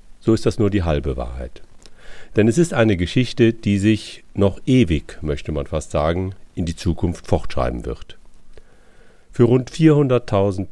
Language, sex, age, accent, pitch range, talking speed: German, male, 40-59, German, 75-100 Hz, 155 wpm